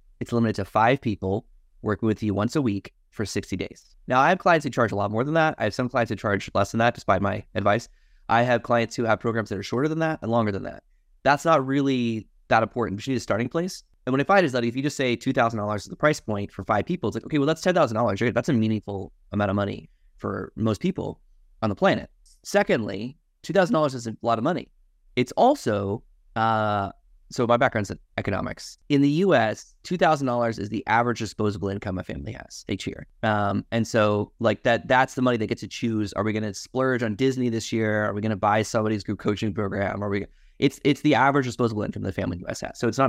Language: English